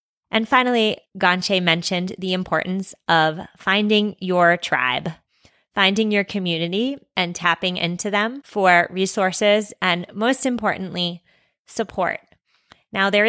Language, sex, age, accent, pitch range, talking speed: English, female, 20-39, American, 175-215 Hz, 115 wpm